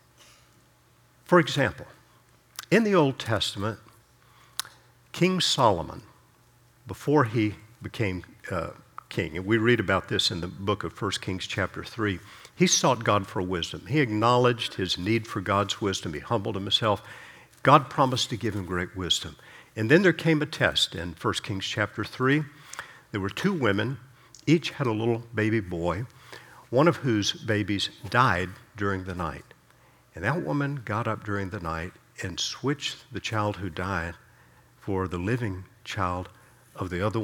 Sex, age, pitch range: male, 50-69, 100-130 Hz